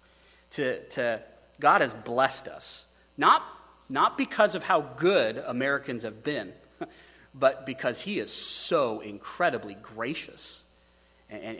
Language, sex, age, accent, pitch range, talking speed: English, male, 40-59, American, 125-210 Hz, 120 wpm